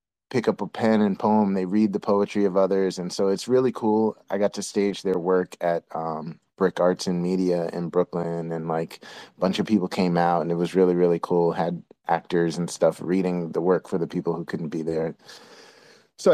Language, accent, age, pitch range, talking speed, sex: English, American, 30-49, 90-105 Hz, 220 wpm, male